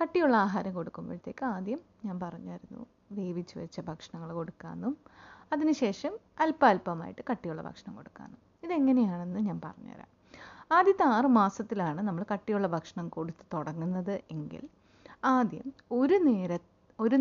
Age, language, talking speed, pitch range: 30-49, Malayalam, 110 wpm, 185-260 Hz